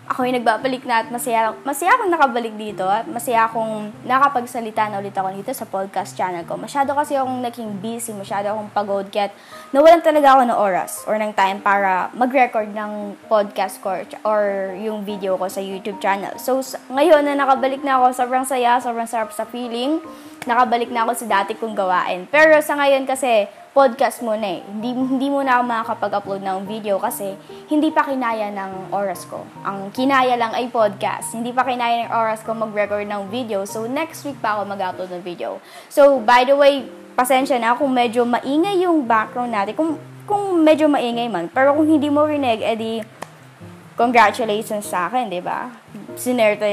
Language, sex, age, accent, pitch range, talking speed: Filipino, female, 20-39, native, 200-265 Hz, 180 wpm